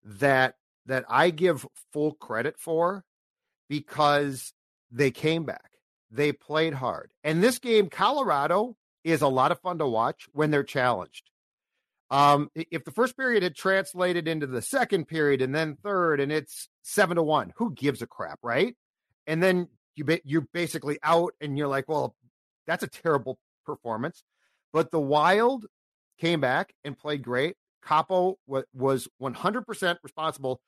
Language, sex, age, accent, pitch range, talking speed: English, male, 50-69, American, 135-165 Hz, 155 wpm